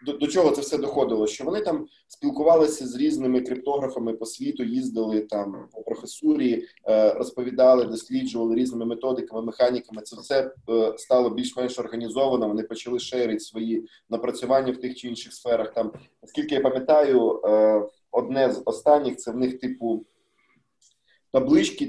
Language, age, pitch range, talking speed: Ukrainian, 20-39, 115-140 Hz, 140 wpm